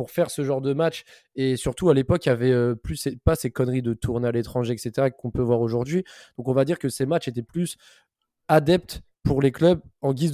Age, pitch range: 20-39, 125-150 Hz